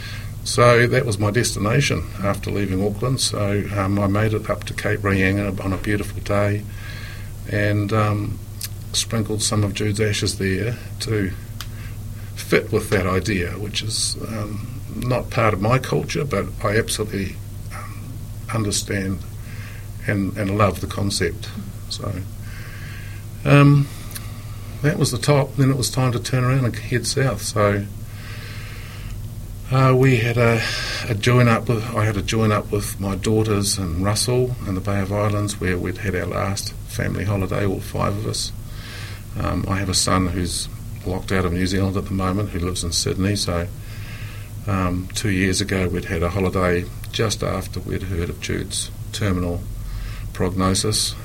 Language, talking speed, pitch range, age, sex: English, 160 wpm, 100-110 Hz, 50-69, male